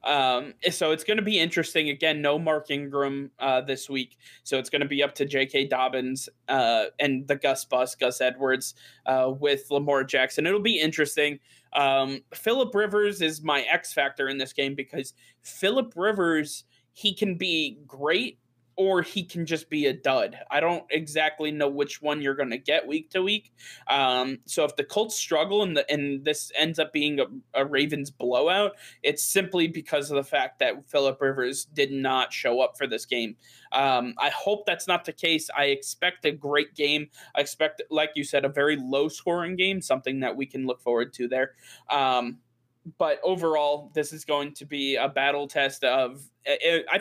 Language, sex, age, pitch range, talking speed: English, male, 20-39, 135-165 Hz, 190 wpm